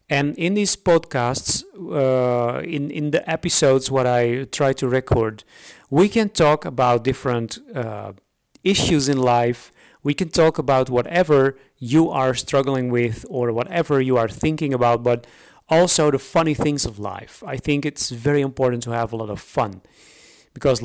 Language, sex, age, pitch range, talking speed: English, male, 40-59, 120-155 Hz, 165 wpm